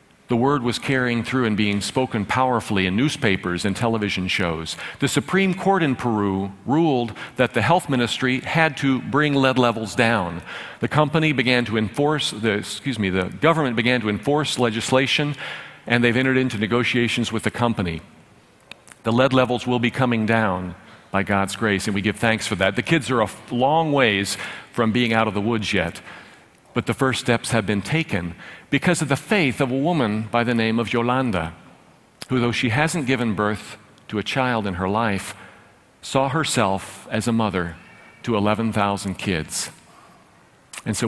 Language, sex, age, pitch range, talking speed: English, male, 50-69, 105-135 Hz, 180 wpm